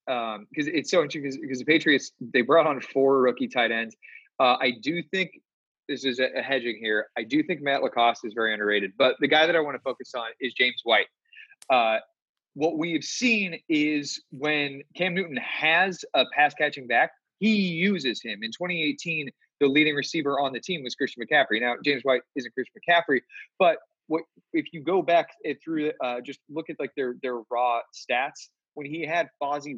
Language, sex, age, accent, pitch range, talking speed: English, male, 30-49, American, 135-190 Hz, 200 wpm